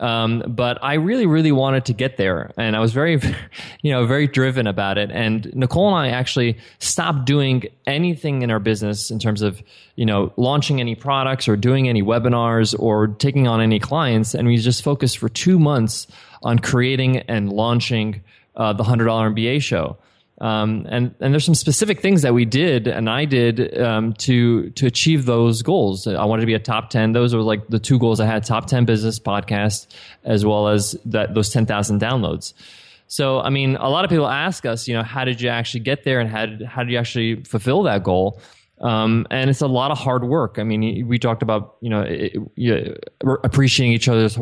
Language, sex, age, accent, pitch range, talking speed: English, male, 20-39, American, 110-135 Hz, 210 wpm